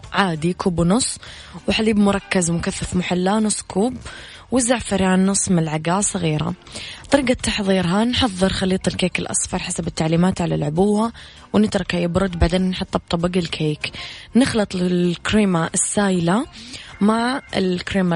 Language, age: English, 20-39